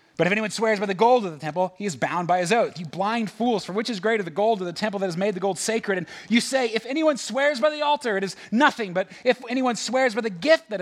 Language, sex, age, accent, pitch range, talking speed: English, male, 30-49, American, 160-225 Hz, 300 wpm